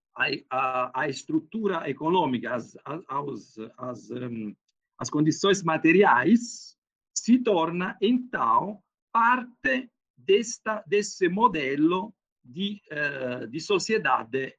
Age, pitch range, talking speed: 50-69, 155-245 Hz, 100 wpm